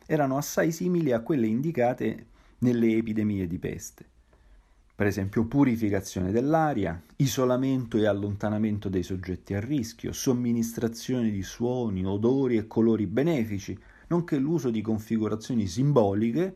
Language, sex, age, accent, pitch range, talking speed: Italian, male, 40-59, native, 95-125 Hz, 120 wpm